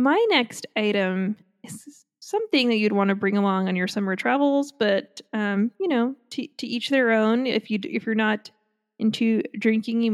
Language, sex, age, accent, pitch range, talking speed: English, female, 20-39, American, 200-245 Hz, 190 wpm